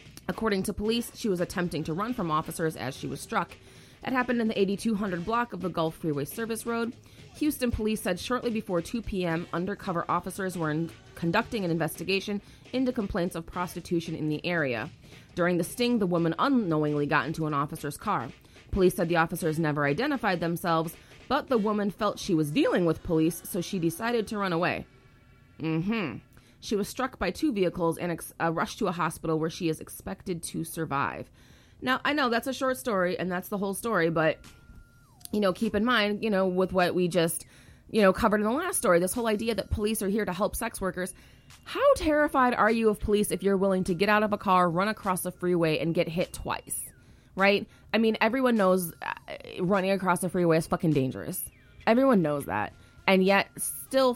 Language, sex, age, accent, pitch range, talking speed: English, female, 30-49, American, 160-215 Hz, 205 wpm